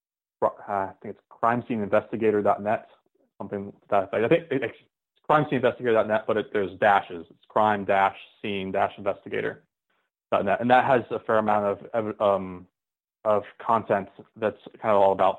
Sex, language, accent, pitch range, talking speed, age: male, English, American, 100-110 Hz, 155 wpm, 30-49